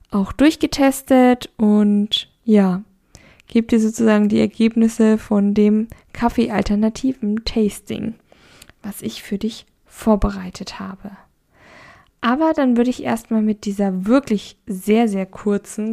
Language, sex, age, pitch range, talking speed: German, female, 10-29, 200-230 Hz, 110 wpm